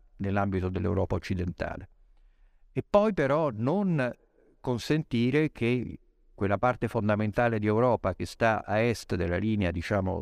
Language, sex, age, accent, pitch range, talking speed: Italian, male, 50-69, native, 100-125 Hz, 125 wpm